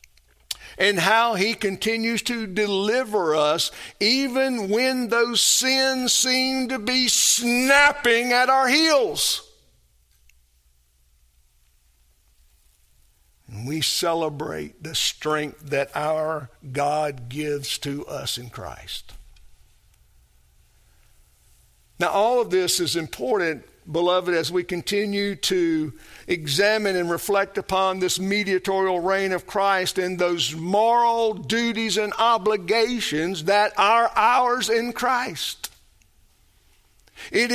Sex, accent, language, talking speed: male, American, English, 100 wpm